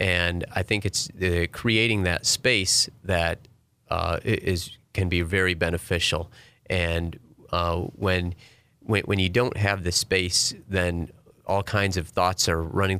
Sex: male